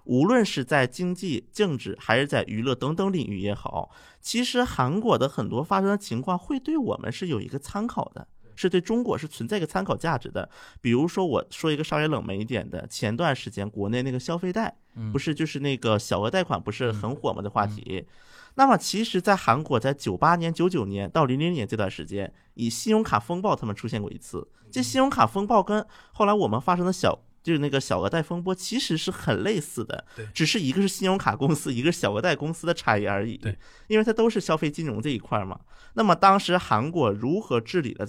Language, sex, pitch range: Chinese, male, 115-185 Hz